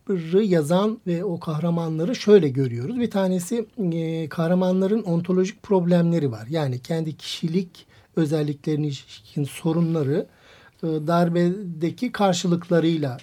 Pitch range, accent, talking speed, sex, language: 145-180 Hz, native, 95 wpm, male, Turkish